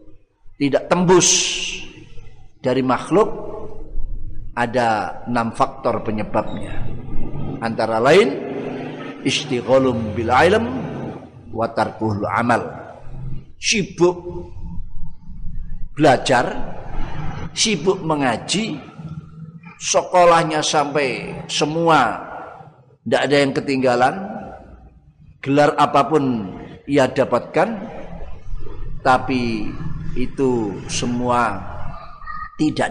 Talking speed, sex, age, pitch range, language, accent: 60 wpm, male, 50-69, 115-155 Hz, Indonesian, native